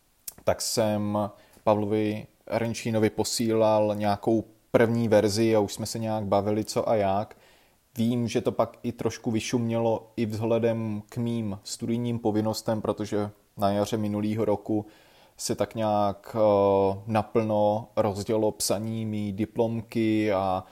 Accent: native